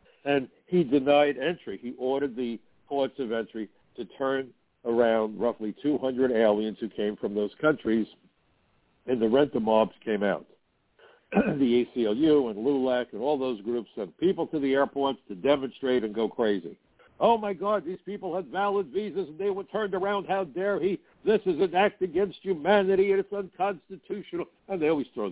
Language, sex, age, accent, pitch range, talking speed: English, male, 60-79, American, 115-160 Hz, 175 wpm